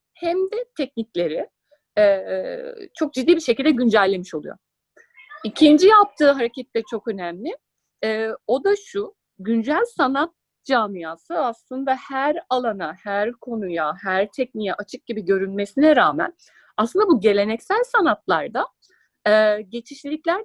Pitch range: 210-310 Hz